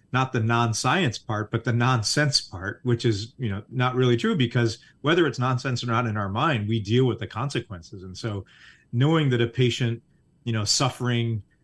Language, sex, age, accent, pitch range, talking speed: English, male, 30-49, American, 105-125 Hz, 195 wpm